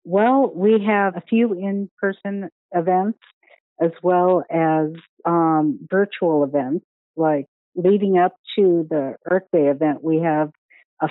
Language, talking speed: English, 130 wpm